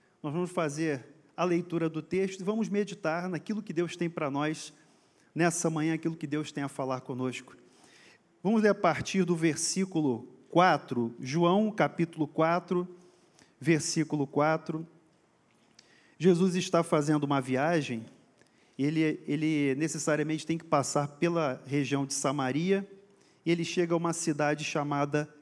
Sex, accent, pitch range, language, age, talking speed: male, Brazilian, 150-195 Hz, Portuguese, 40-59, 140 wpm